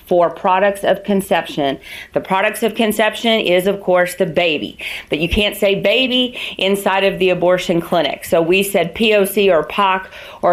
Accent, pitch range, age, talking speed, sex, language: American, 175-200 Hz, 40-59, 170 wpm, female, English